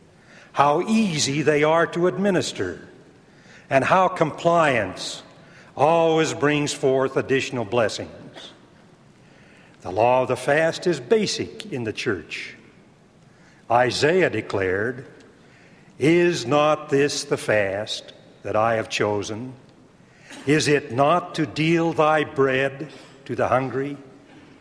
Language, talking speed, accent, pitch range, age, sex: English, 110 wpm, American, 135-170 Hz, 60-79, male